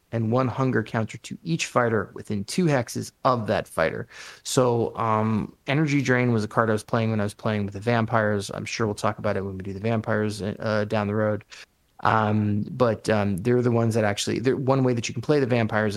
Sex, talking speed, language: male, 230 wpm, English